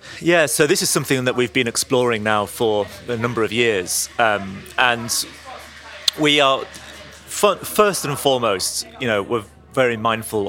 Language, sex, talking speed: English, male, 155 wpm